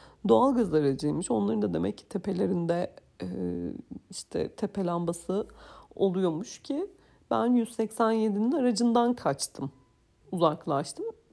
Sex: female